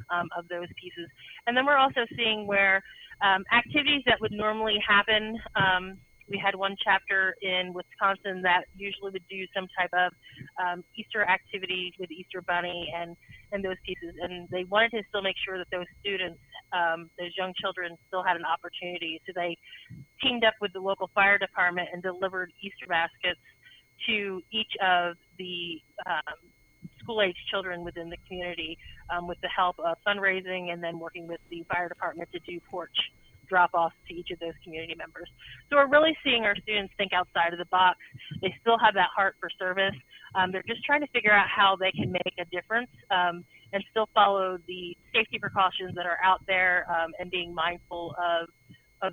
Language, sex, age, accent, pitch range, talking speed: English, female, 30-49, American, 175-200 Hz, 185 wpm